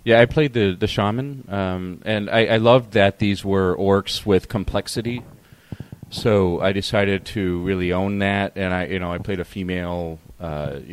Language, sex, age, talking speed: English, male, 40-59, 180 wpm